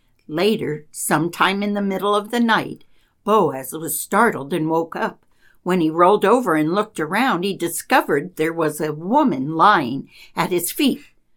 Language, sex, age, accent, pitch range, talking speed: English, female, 60-79, American, 160-200 Hz, 165 wpm